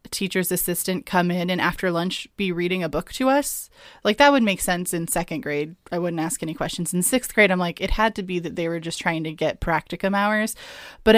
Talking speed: 240 wpm